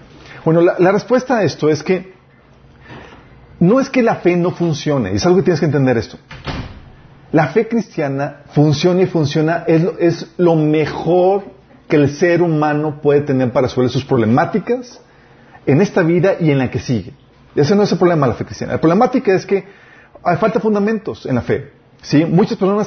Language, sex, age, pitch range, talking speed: Spanish, male, 40-59, 135-180 Hz, 195 wpm